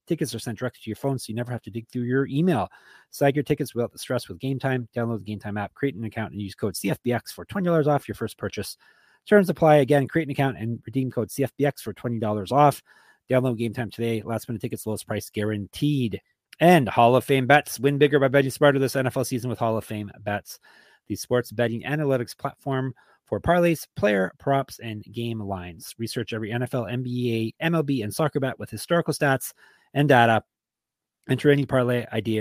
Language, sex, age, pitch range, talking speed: English, male, 30-49, 110-140 Hz, 205 wpm